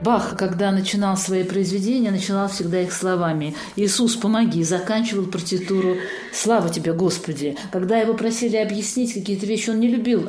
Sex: female